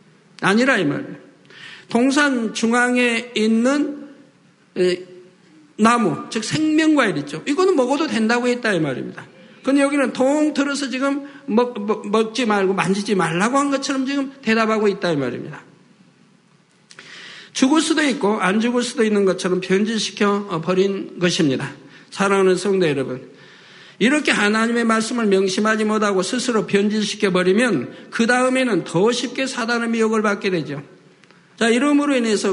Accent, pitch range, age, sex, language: native, 190-250 Hz, 50-69, male, Korean